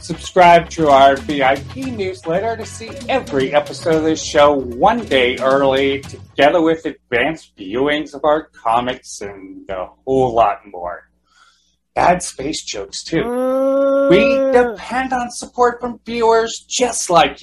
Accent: American